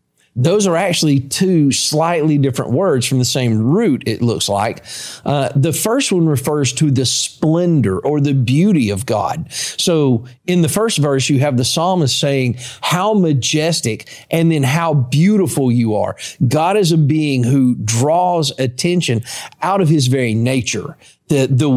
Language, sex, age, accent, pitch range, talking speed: English, male, 40-59, American, 130-165 Hz, 160 wpm